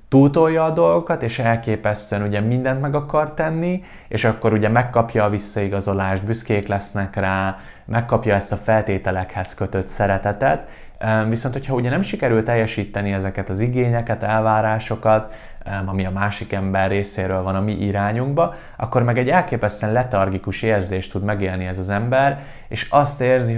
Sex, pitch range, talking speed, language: male, 95-115 Hz, 150 wpm, Hungarian